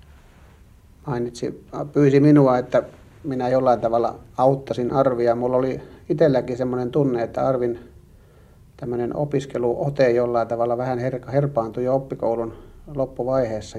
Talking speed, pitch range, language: 115 wpm, 110-145 Hz, Finnish